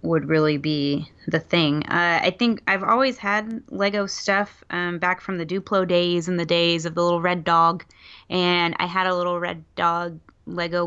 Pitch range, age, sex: 165-195 Hz, 20-39, female